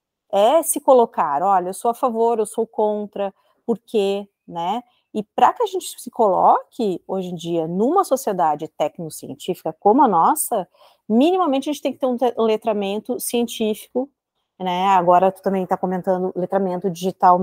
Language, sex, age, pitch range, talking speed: Portuguese, female, 30-49, 180-245 Hz, 160 wpm